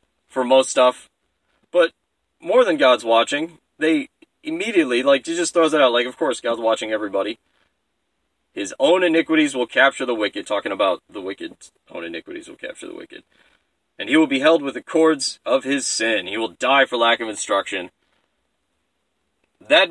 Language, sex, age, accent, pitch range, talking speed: English, male, 30-49, American, 120-165 Hz, 175 wpm